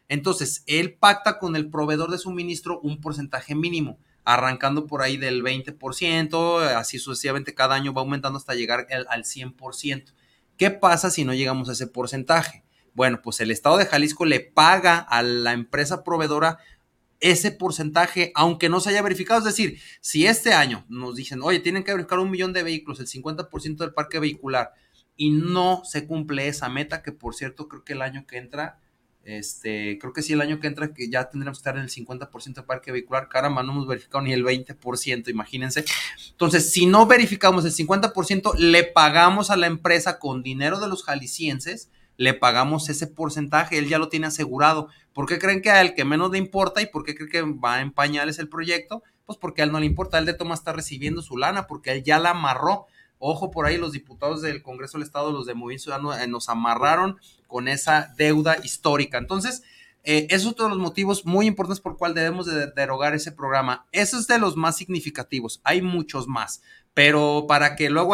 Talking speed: 200 wpm